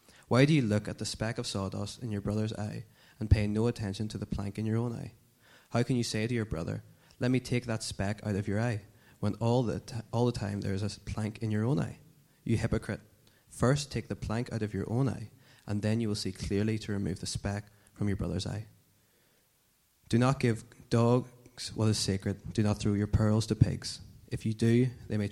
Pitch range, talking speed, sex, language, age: 100-115 Hz, 230 wpm, male, English, 20-39